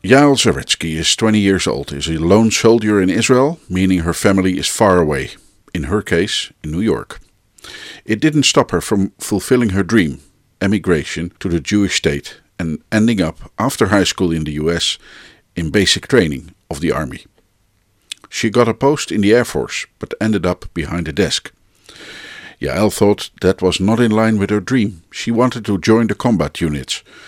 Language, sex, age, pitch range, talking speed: Dutch, male, 50-69, 85-110 Hz, 185 wpm